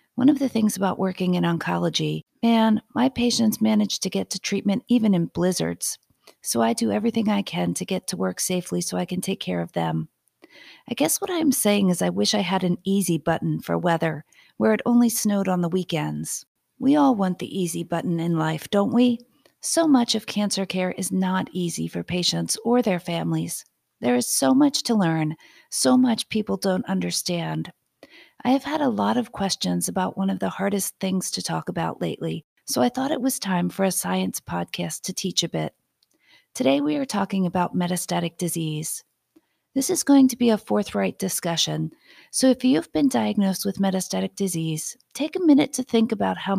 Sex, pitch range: female, 170-235 Hz